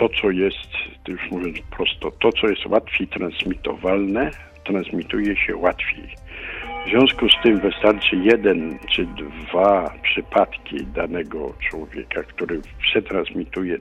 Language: Polish